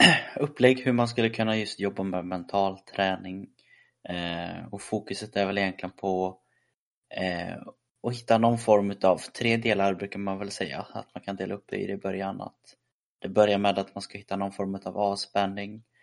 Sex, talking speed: male, 180 wpm